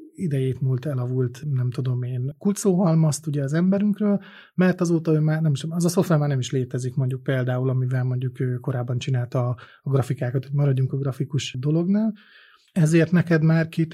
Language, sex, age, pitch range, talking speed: Hungarian, male, 30-49, 130-155 Hz, 165 wpm